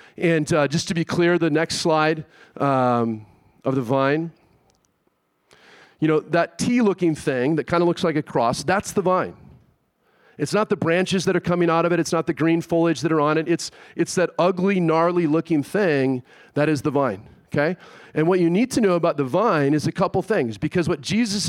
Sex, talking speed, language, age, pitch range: male, 210 wpm, English, 40-59, 150-190 Hz